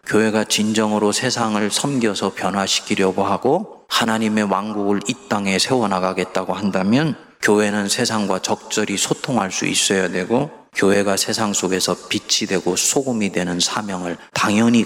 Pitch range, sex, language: 95-110 Hz, male, Korean